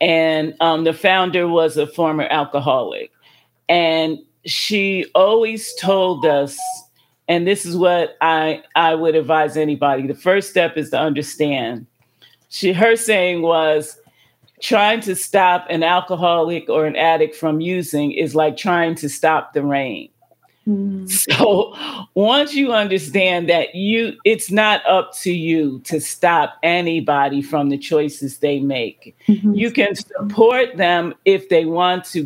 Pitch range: 155-205 Hz